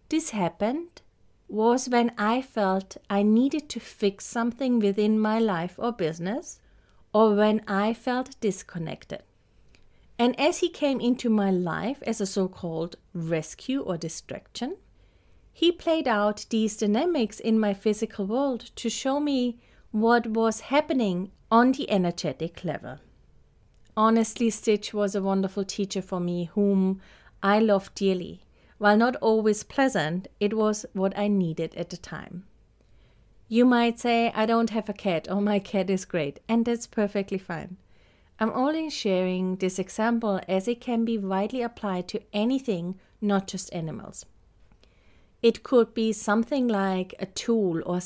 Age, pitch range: 30-49, 190-235 Hz